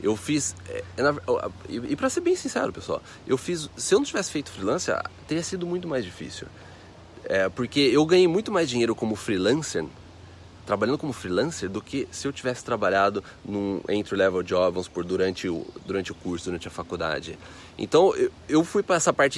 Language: Portuguese